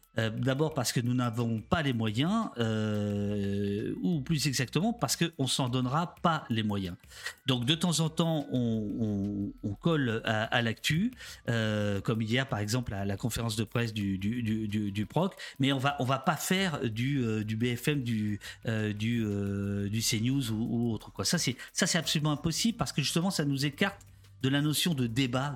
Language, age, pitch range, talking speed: French, 50-69, 110-150 Hz, 210 wpm